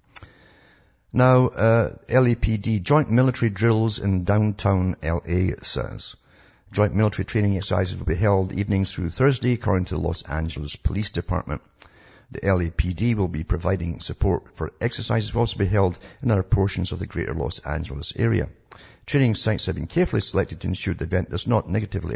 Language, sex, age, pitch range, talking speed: English, male, 60-79, 85-110 Hz, 165 wpm